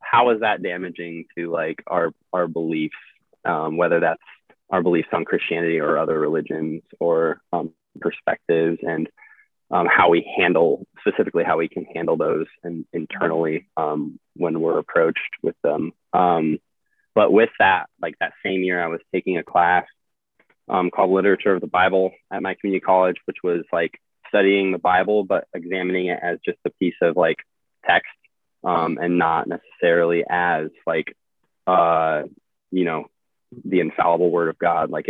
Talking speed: 160 wpm